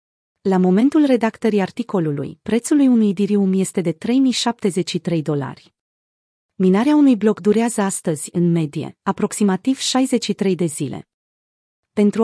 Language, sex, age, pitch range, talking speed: Romanian, female, 30-49, 175-225 Hz, 120 wpm